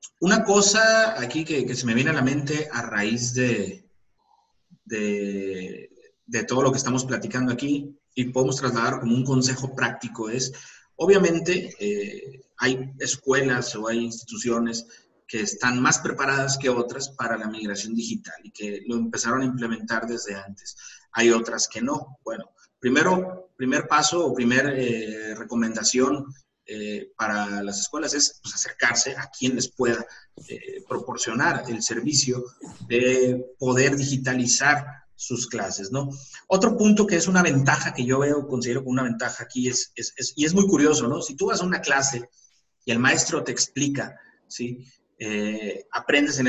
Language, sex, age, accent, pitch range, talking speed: Spanish, male, 30-49, Mexican, 115-145 Hz, 160 wpm